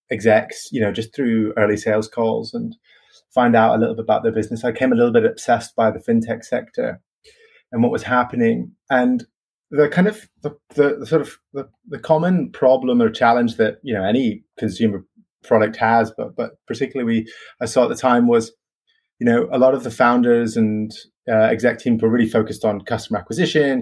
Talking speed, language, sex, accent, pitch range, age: 200 wpm, English, male, British, 110-140 Hz, 20-39